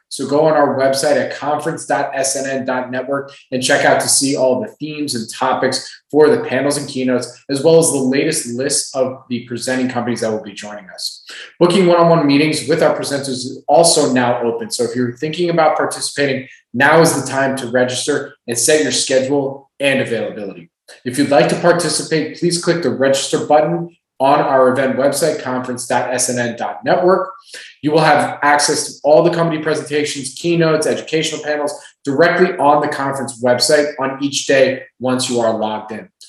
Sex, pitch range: male, 125-155 Hz